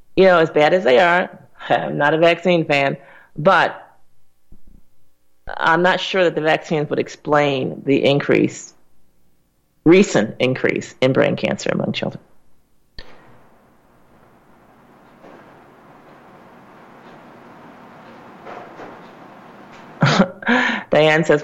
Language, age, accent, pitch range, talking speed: English, 40-59, American, 140-180 Hz, 90 wpm